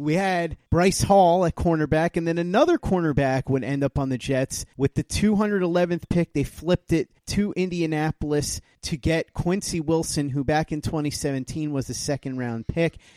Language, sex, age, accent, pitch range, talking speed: English, male, 30-49, American, 145-180 Hz, 170 wpm